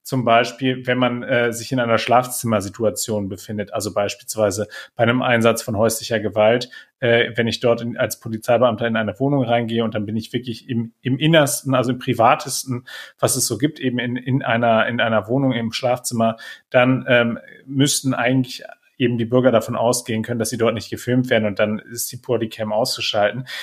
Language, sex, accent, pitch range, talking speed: German, male, German, 115-135 Hz, 190 wpm